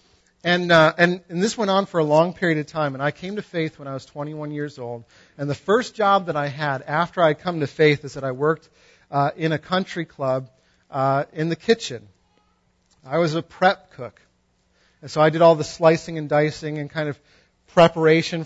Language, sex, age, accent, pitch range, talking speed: English, male, 40-59, American, 145-170 Hz, 220 wpm